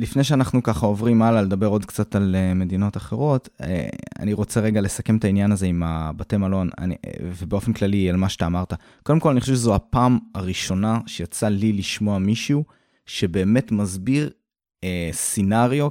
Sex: male